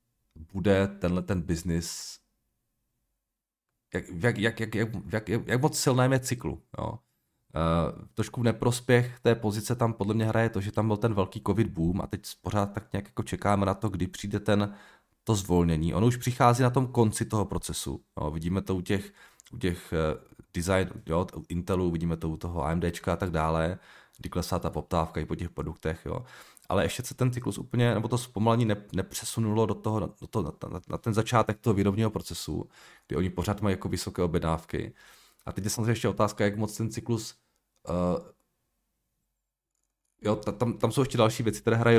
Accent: native